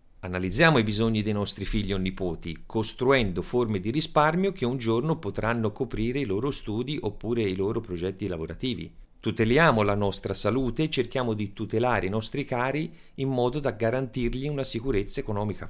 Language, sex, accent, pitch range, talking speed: Italian, male, native, 90-130 Hz, 165 wpm